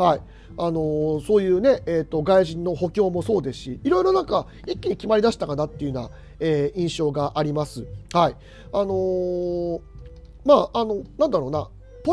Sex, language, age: male, Japanese, 40-59